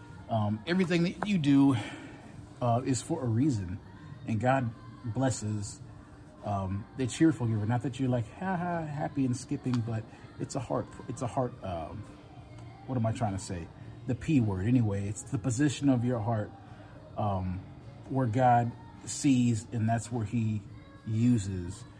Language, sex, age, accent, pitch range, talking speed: English, male, 30-49, American, 105-135 Hz, 160 wpm